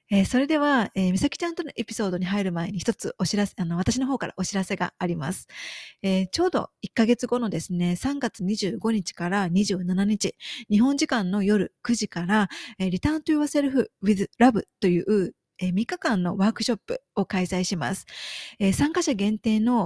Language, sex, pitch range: Japanese, female, 190-250 Hz